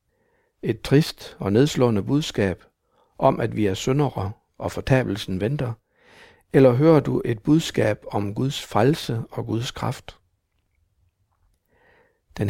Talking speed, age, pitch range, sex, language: 120 wpm, 60-79, 105-130 Hz, male, Danish